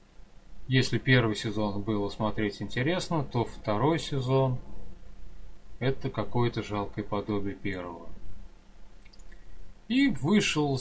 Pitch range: 95-130 Hz